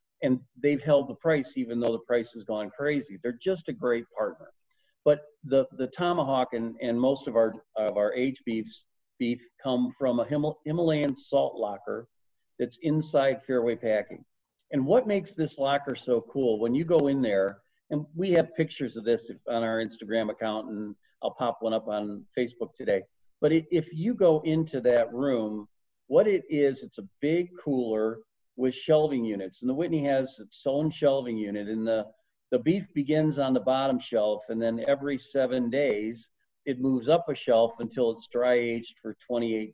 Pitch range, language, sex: 115-155 Hz, English, male